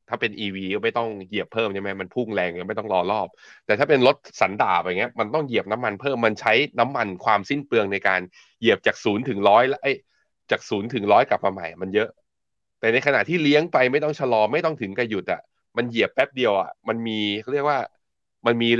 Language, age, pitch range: Thai, 20-39, 95-120 Hz